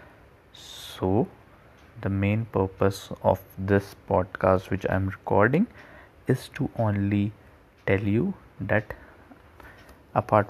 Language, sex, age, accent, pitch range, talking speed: Hindi, male, 20-39, native, 95-105 Hz, 105 wpm